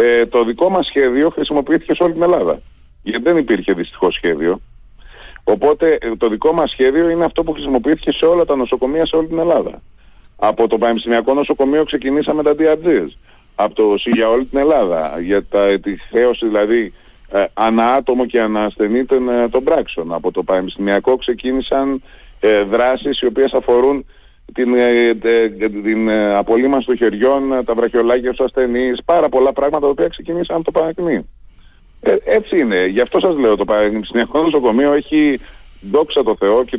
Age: 30-49